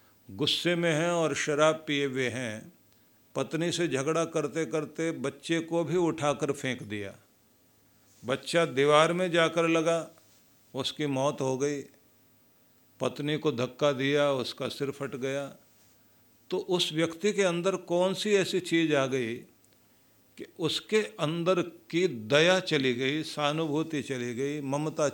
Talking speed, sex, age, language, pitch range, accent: 140 wpm, male, 50-69, Hindi, 130-160 Hz, native